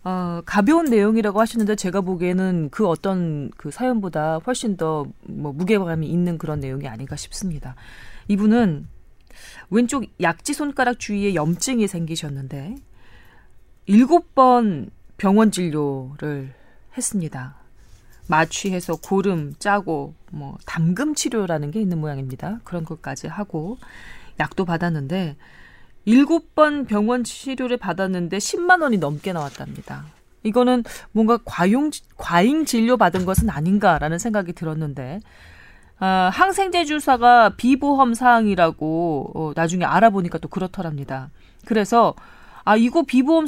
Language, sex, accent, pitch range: Korean, female, native, 160-235 Hz